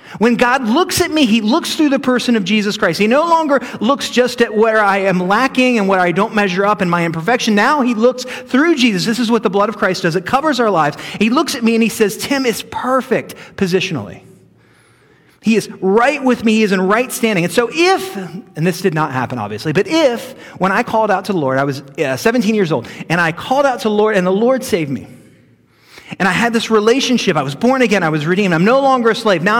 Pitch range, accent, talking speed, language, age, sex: 165-240 Hz, American, 250 wpm, English, 30-49, male